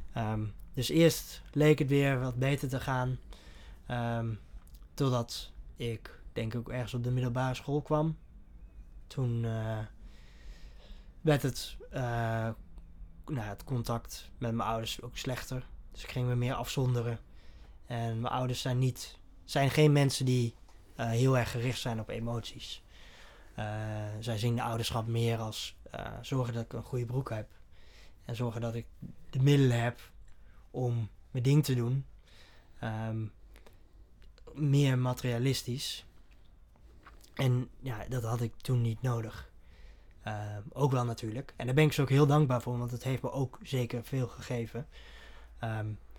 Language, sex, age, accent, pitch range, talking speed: Dutch, male, 20-39, Dutch, 100-125 Hz, 145 wpm